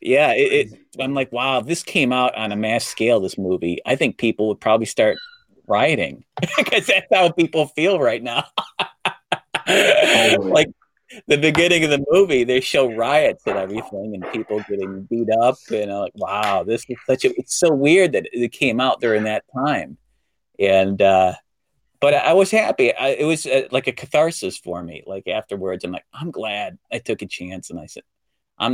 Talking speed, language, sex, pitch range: 190 wpm, English, male, 100-155 Hz